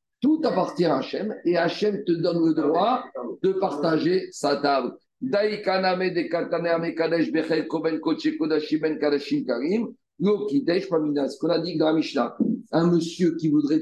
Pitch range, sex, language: 150-205 Hz, male, French